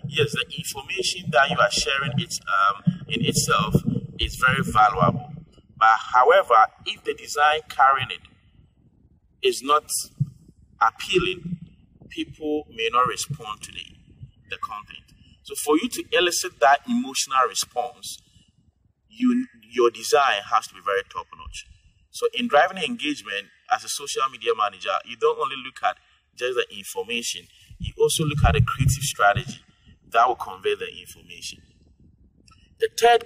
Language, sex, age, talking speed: English, male, 30-49, 140 wpm